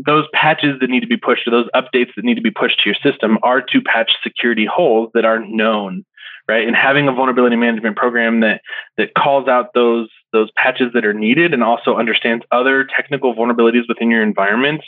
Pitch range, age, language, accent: 110-130 Hz, 20-39, English, American